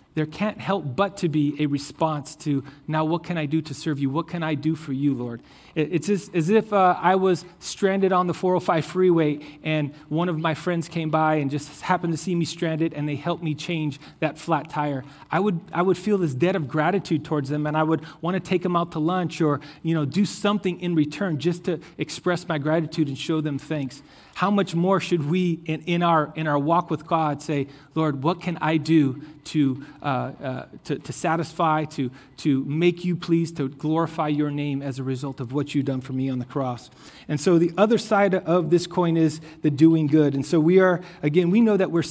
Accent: American